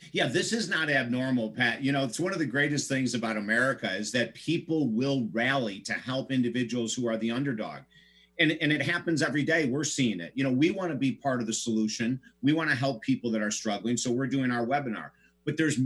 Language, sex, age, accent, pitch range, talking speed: English, male, 50-69, American, 115-140 Hz, 235 wpm